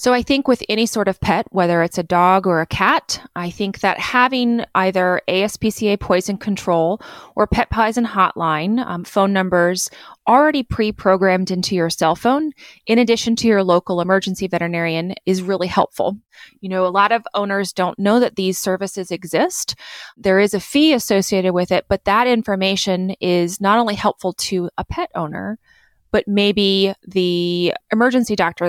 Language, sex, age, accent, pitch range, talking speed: English, female, 20-39, American, 175-215 Hz, 170 wpm